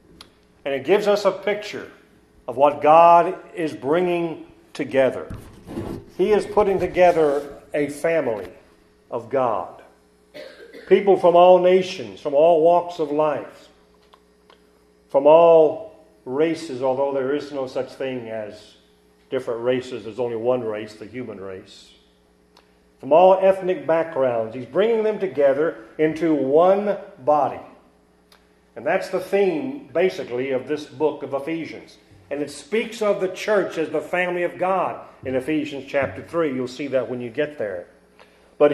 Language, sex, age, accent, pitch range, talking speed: English, male, 50-69, American, 125-190 Hz, 140 wpm